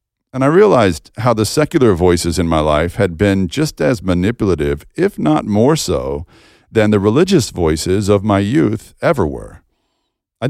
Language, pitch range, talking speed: English, 85-115 Hz, 165 wpm